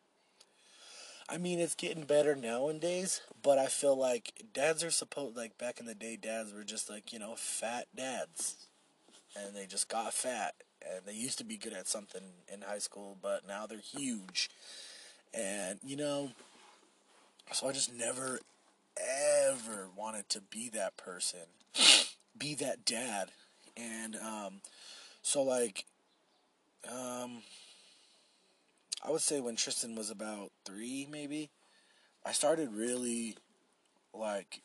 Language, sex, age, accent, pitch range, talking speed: English, male, 20-39, American, 110-160 Hz, 140 wpm